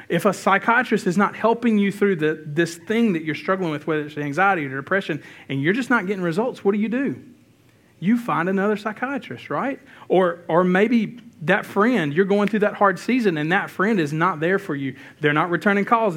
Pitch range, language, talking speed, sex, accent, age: 135-195 Hz, English, 215 wpm, male, American, 40-59